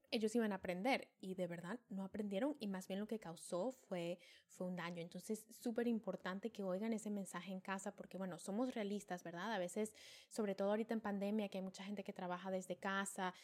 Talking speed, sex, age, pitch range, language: 215 wpm, female, 10-29, 190-240 Hz, Spanish